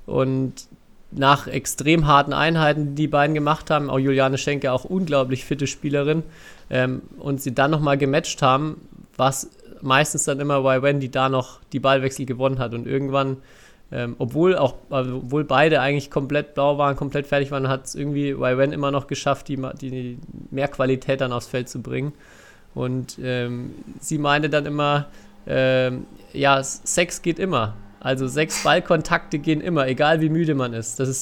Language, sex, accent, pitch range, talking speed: German, male, German, 130-145 Hz, 170 wpm